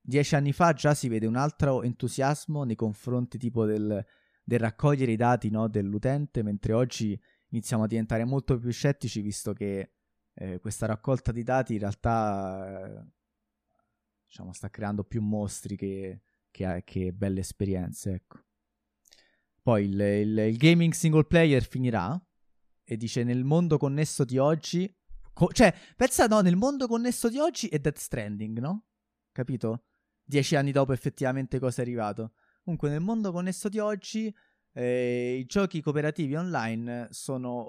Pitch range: 110-150 Hz